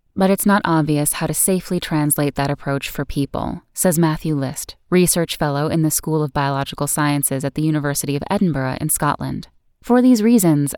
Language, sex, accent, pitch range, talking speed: English, female, American, 145-190 Hz, 185 wpm